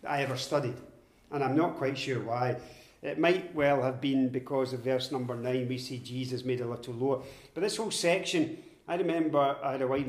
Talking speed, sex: 215 wpm, male